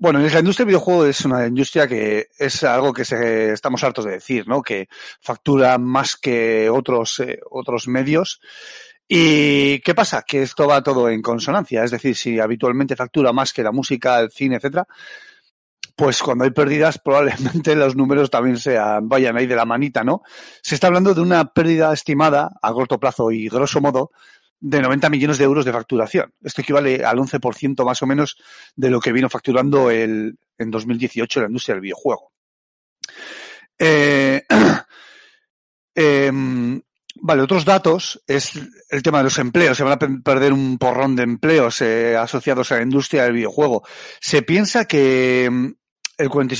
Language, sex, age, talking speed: Spanish, male, 30-49, 170 wpm